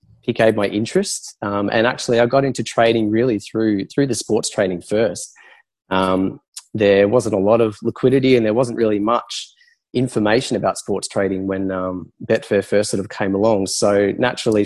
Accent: Australian